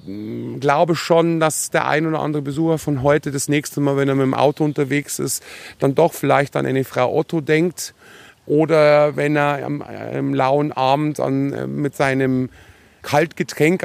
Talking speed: 180 wpm